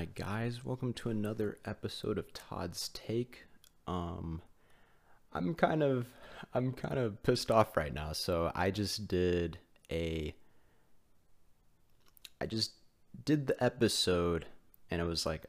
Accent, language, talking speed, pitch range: American, English, 130 wpm, 90-120 Hz